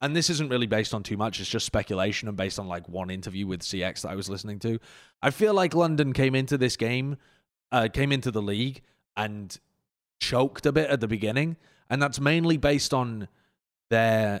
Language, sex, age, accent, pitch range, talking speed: English, male, 30-49, British, 110-150 Hz, 210 wpm